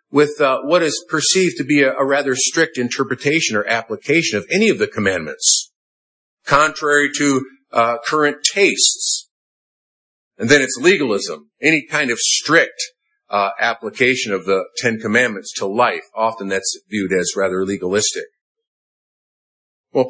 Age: 50-69